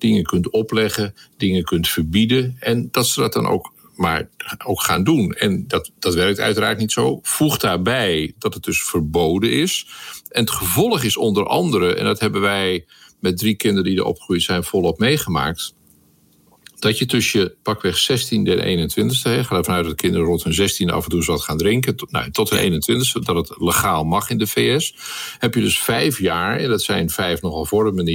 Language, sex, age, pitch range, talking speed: Dutch, male, 50-69, 85-120 Hz, 200 wpm